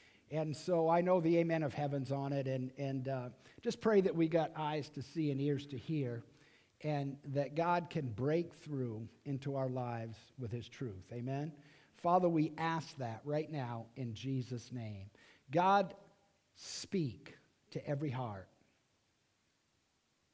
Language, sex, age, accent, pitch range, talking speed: English, male, 50-69, American, 120-160 Hz, 155 wpm